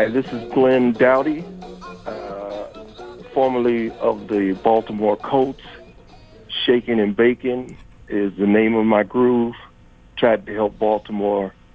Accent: American